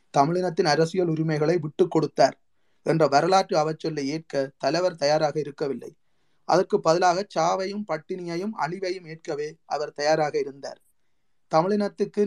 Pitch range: 150-185 Hz